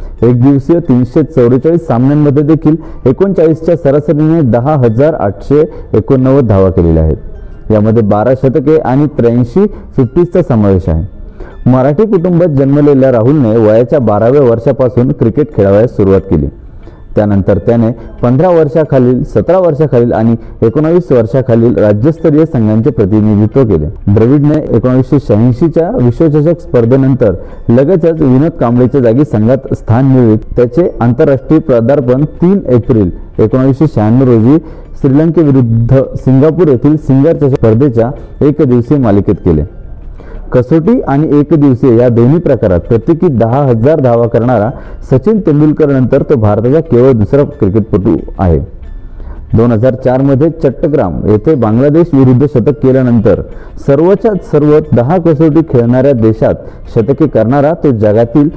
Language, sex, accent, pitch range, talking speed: Marathi, male, native, 115-150 Hz, 100 wpm